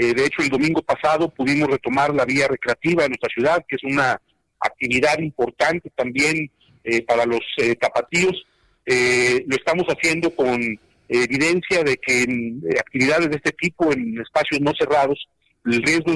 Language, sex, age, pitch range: Spanish, male, 50-69, 135-175 Hz